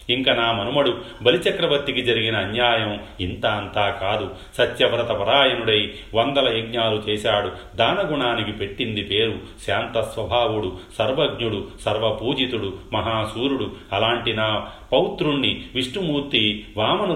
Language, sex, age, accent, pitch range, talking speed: Telugu, male, 40-59, native, 100-125 Hz, 85 wpm